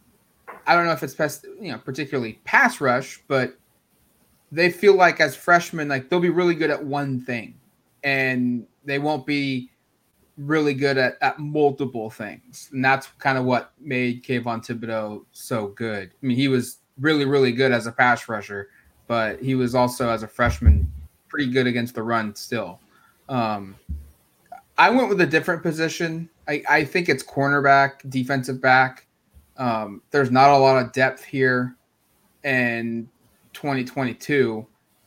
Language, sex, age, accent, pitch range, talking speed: English, male, 20-39, American, 125-145 Hz, 155 wpm